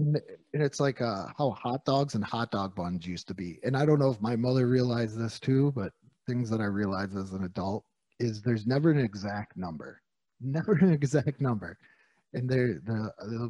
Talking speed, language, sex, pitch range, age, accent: 195 wpm, English, male, 105-140 Hz, 30-49, American